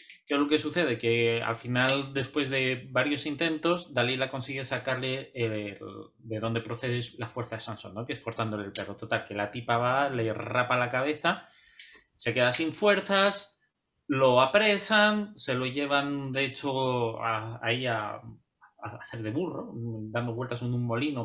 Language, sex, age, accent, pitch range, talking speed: Spanish, male, 30-49, Spanish, 120-155 Hz, 175 wpm